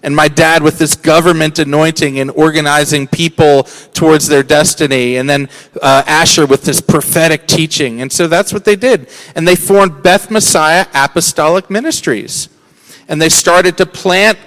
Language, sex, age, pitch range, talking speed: English, male, 40-59, 150-190 Hz, 160 wpm